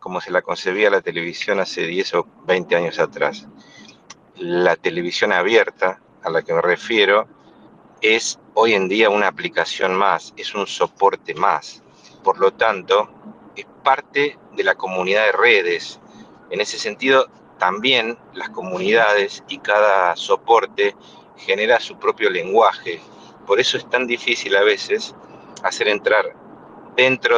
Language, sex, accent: Spanish, male, Argentinian